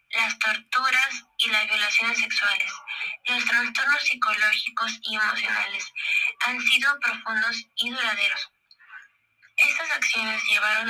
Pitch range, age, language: 215-275 Hz, 20-39, Spanish